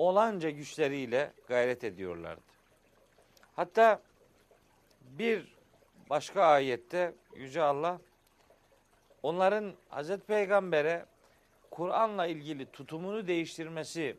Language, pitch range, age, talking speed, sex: Turkish, 140-195 Hz, 50-69, 70 wpm, male